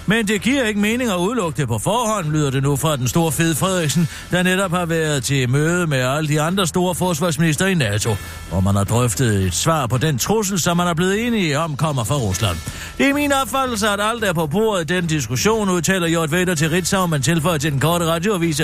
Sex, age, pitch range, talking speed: male, 60-79, 135-190 Hz, 230 wpm